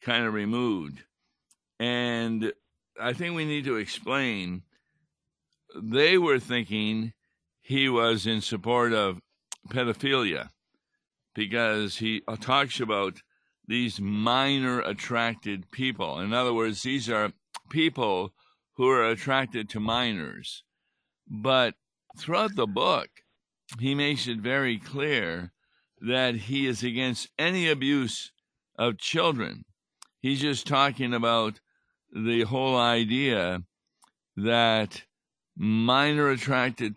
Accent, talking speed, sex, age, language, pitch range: American, 105 wpm, male, 60-79, English, 105-130 Hz